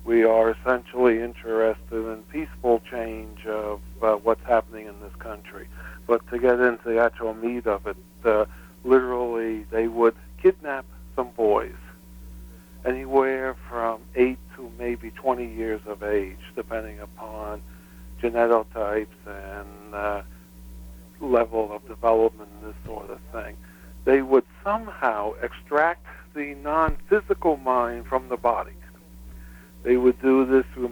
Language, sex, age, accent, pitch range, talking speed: English, male, 60-79, American, 95-130 Hz, 130 wpm